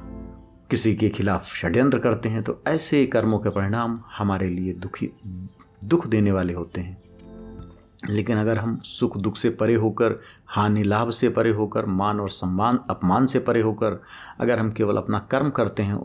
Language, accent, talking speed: Hindi, native, 170 wpm